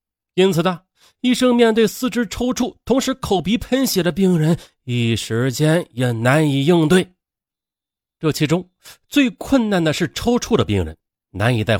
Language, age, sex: Chinese, 30-49, male